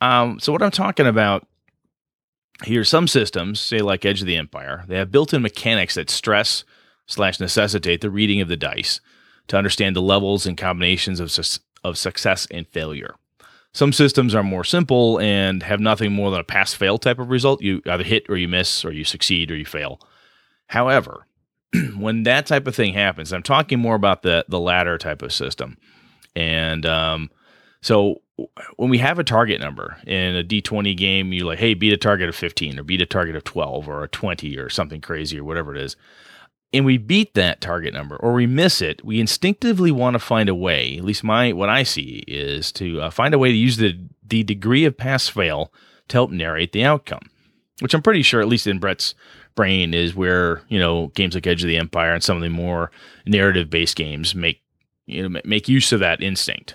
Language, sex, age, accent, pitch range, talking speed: English, male, 30-49, American, 90-120 Hz, 210 wpm